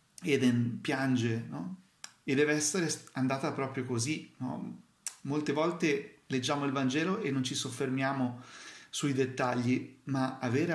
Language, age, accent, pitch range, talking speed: Italian, 40-59, native, 125-150 Hz, 115 wpm